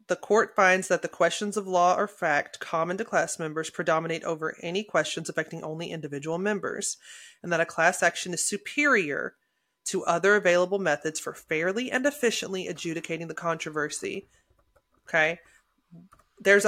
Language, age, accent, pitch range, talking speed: English, 30-49, American, 160-205 Hz, 150 wpm